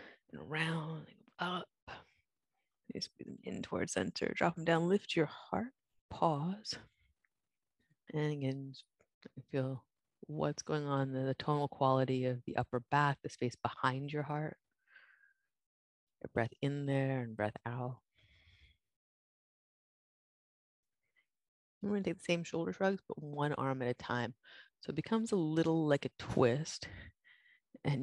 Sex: female